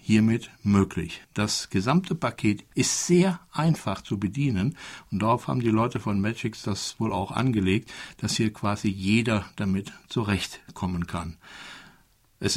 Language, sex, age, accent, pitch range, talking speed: German, male, 60-79, German, 95-130 Hz, 140 wpm